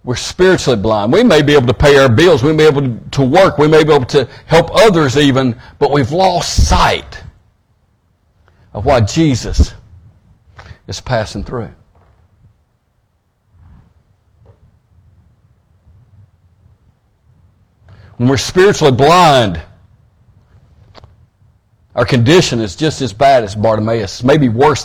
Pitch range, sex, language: 100-150 Hz, male, English